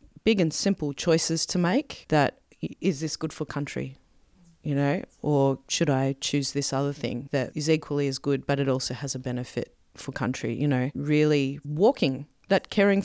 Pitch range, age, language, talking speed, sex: 140-180 Hz, 30-49, English, 185 wpm, female